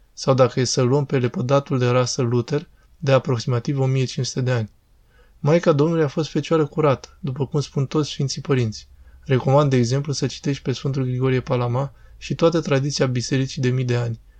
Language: Romanian